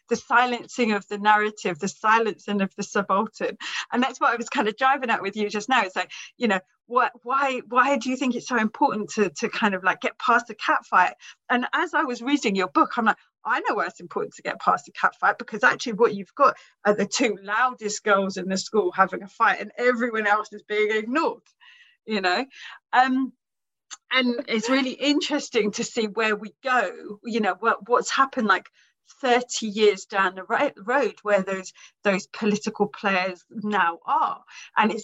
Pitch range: 200-255 Hz